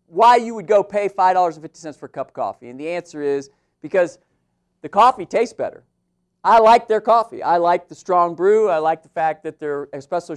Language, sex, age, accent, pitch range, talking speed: English, male, 50-69, American, 150-215 Hz, 210 wpm